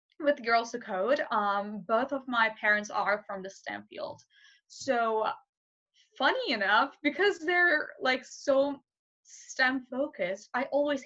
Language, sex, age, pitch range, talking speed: English, female, 20-39, 220-290 Hz, 130 wpm